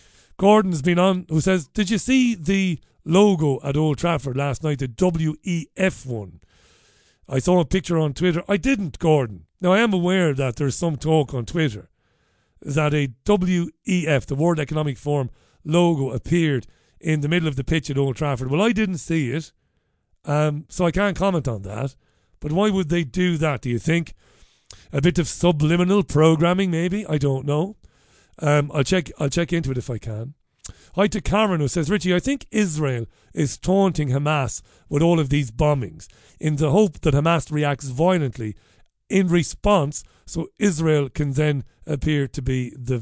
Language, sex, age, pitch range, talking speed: English, male, 40-59, 135-180 Hz, 180 wpm